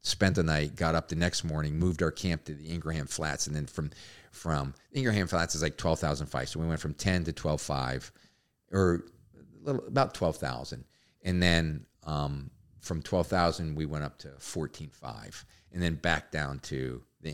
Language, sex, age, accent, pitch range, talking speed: English, male, 50-69, American, 75-90 Hz, 200 wpm